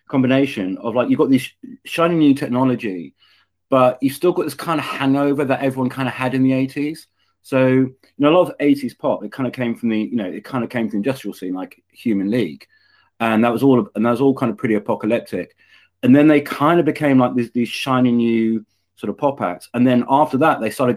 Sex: male